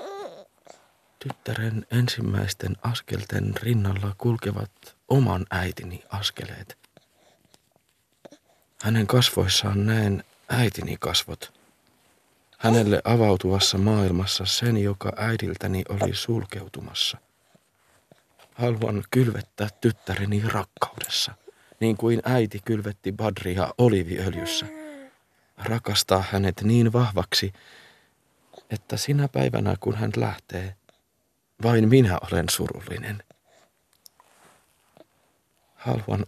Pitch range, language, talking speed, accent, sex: 95-115 Hz, Finnish, 75 wpm, native, male